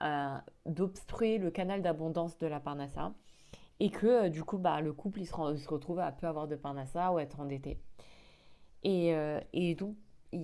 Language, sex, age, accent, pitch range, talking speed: French, female, 20-39, French, 155-200 Hz, 200 wpm